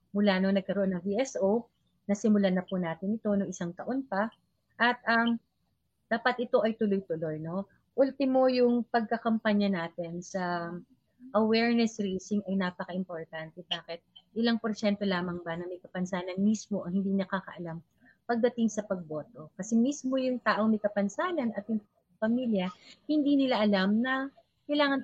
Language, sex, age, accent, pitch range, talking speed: Filipino, female, 30-49, native, 185-235 Hz, 140 wpm